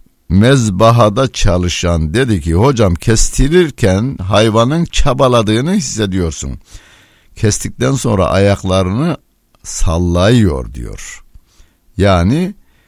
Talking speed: 70 wpm